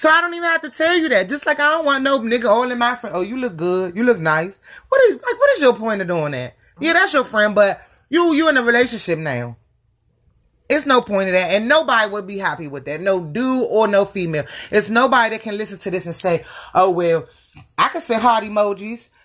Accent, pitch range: American, 190-245 Hz